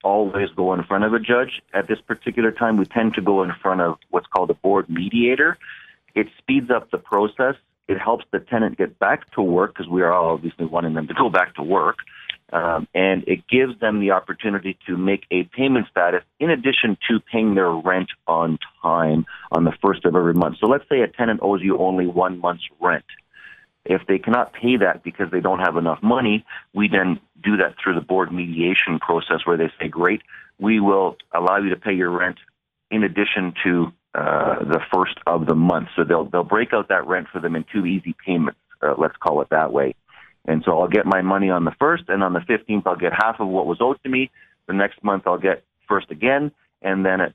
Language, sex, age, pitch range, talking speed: English, male, 40-59, 90-110 Hz, 225 wpm